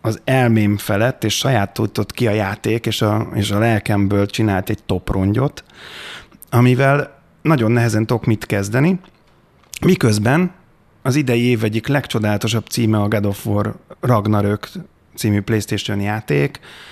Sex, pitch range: male, 105-120 Hz